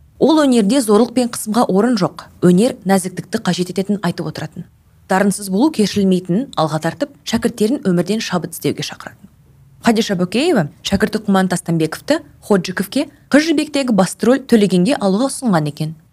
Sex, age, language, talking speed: female, 20-39, Russian, 85 wpm